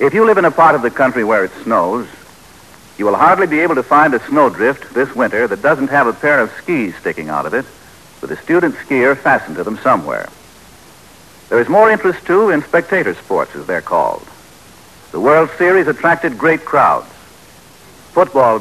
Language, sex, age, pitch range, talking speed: English, male, 70-89, 130-175 Hz, 195 wpm